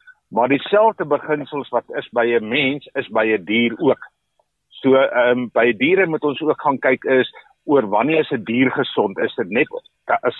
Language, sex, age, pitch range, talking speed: Swedish, male, 50-69, 120-155 Hz, 195 wpm